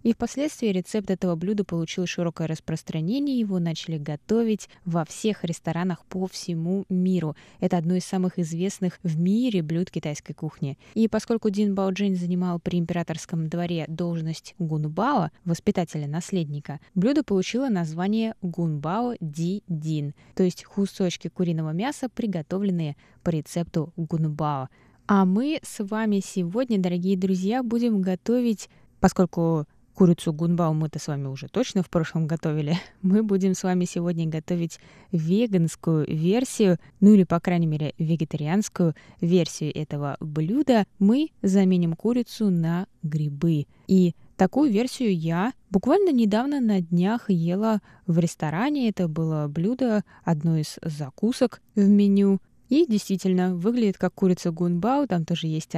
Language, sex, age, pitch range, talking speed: Russian, female, 20-39, 165-205 Hz, 135 wpm